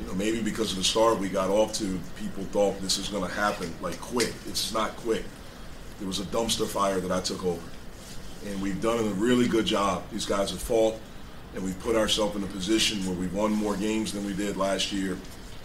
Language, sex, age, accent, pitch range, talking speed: English, male, 40-59, American, 95-110 Hz, 230 wpm